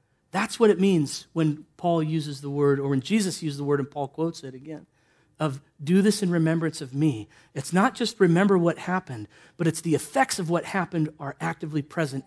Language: English